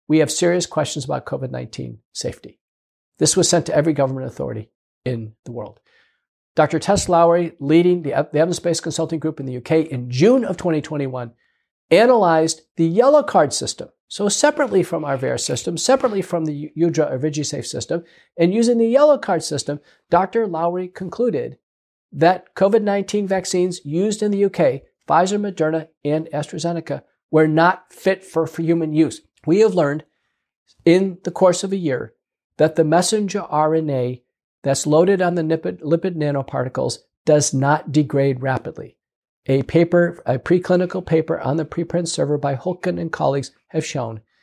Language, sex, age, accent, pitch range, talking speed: English, male, 50-69, American, 145-180 Hz, 160 wpm